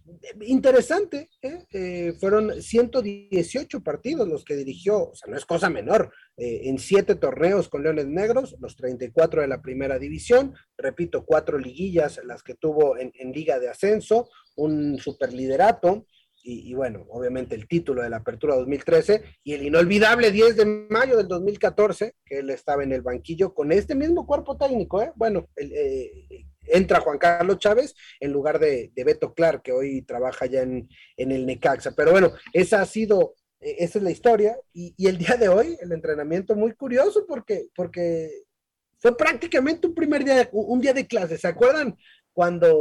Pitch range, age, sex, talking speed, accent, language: 150-240 Hz, 40-59, male, 175 wpm, Mexican, Spanish